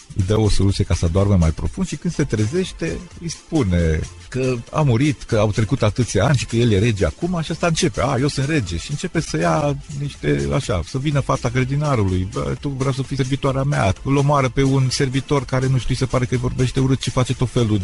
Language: Romanian